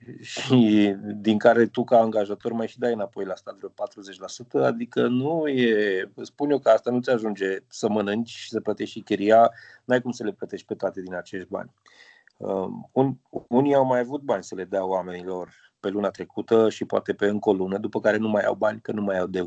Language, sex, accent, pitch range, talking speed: Romanian, male, native, 100-120 Hz, 215 wpm